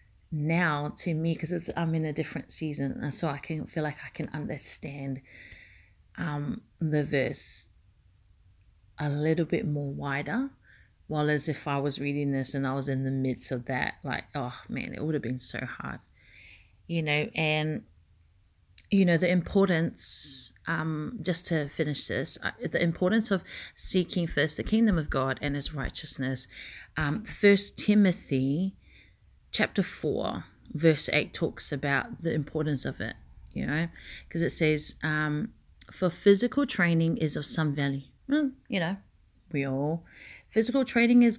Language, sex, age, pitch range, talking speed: English, female, 30-49, 140-180 Hz, 160 wpm